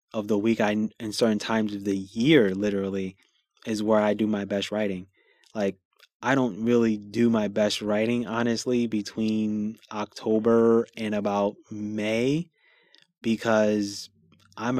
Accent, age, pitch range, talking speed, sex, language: American, 20-39, 100-115 Hz, 135 wpm, male, English